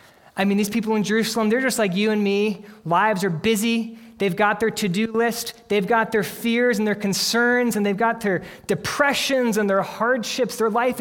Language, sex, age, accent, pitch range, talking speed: English, male, 20-39, American, 155-215 Hz, 200 wpm